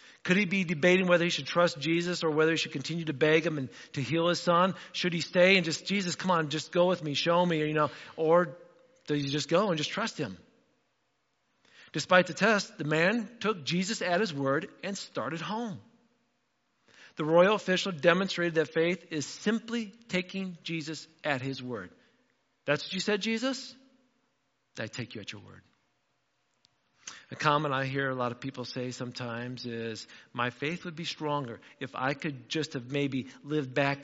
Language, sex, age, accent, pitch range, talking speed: English, male, 40-59, American, 125-175 Hz, 190 wpm